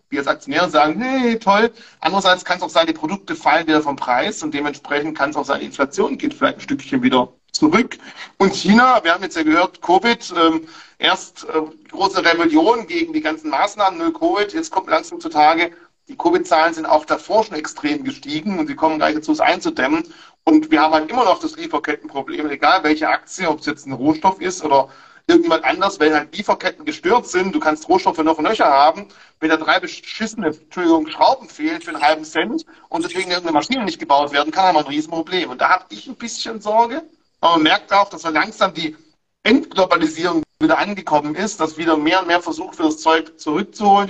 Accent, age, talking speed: German, 40-59, 210 wpm